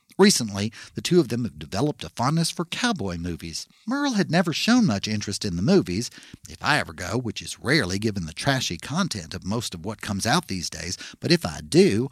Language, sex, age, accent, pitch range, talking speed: English, male, 50-69, American, 95-150 Hz, 220 wpm